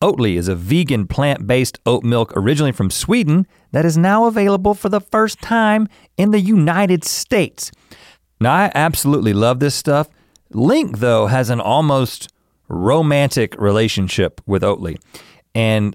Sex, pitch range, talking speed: male, 110-165 Hz, 145 wpm